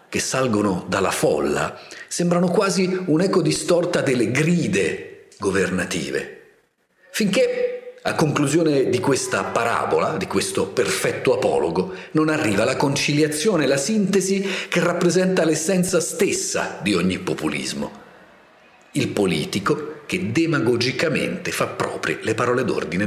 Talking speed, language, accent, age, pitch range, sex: 110 wpm, Italian, native, 50-69, 135-195 Hz, male